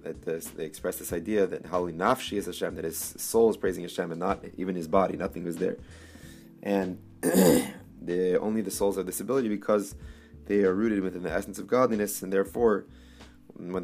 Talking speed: 195 wpm